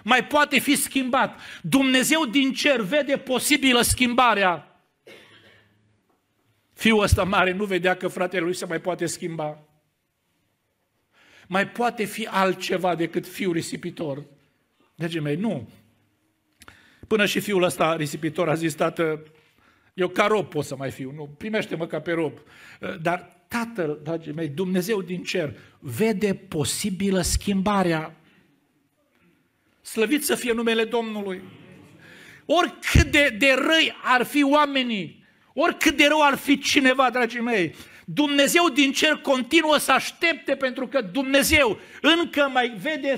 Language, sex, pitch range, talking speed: Romanian, male, 160-255 Hz, 130 wpm